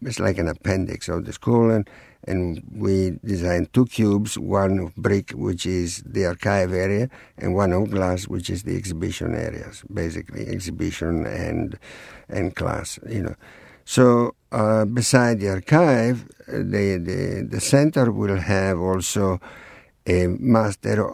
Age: 60-79